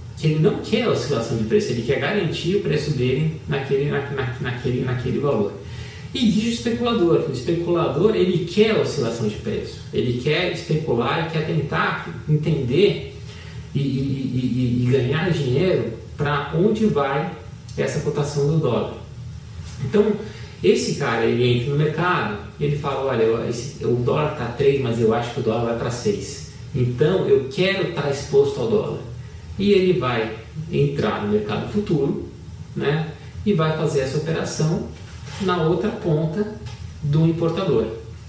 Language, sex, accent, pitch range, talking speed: Portuguese, male, Brazilian, 120-160 Hz, 165 wpm